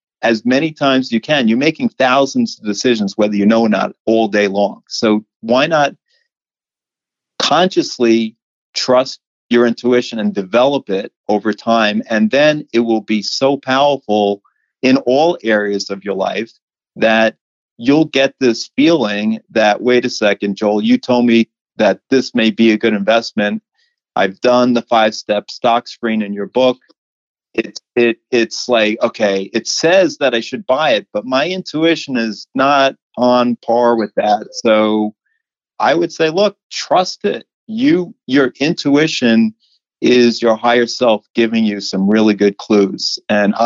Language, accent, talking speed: English, American, 155 wpm